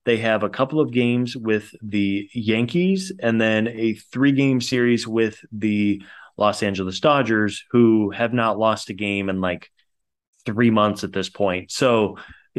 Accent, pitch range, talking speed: American, 100-120 Hz, 165 wpm